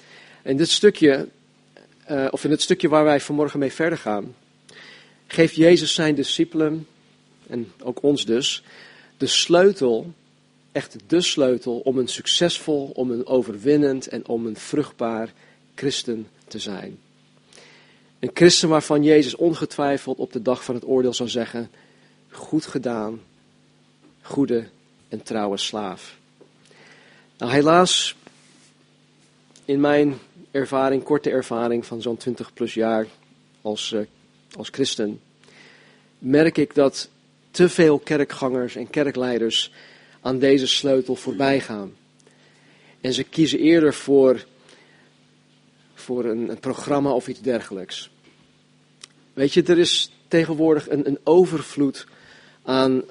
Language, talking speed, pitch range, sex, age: Dutch, 115 wpm, 120-150 Hz, male, 40-59